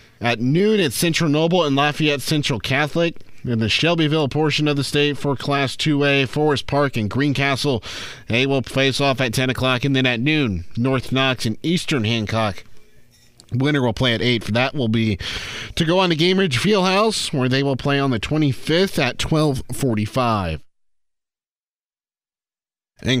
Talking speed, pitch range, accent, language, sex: 170 wpm, 120-155 Hz, American, English, male